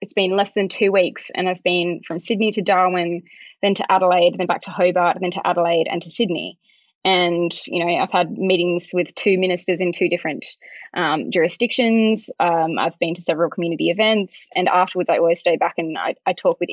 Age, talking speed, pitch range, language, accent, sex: 20-39, 210 wpm, 175-210 Hz, English, Australian, female